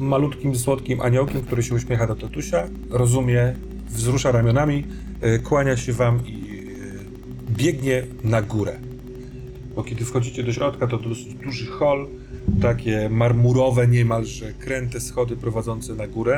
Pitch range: 115-125 Hz